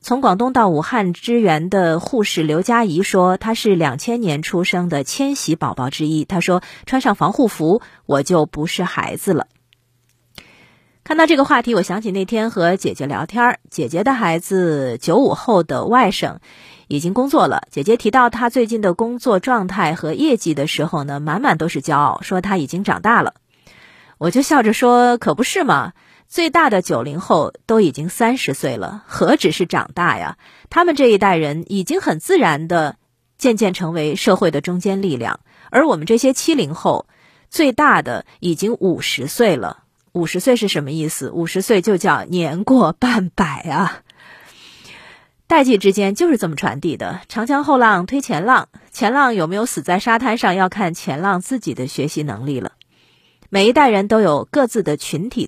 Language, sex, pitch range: Chinese, female, 160-235 Hz